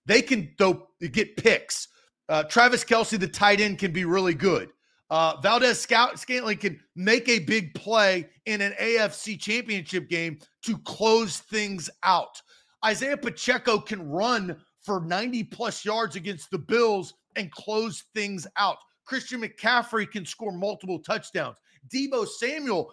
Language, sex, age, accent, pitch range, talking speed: English, male, 30-49, American, 180-230 Hz, 140 wpm